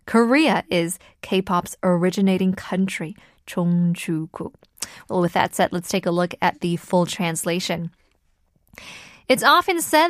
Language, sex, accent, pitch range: Korean, female, American, 185-255 Hz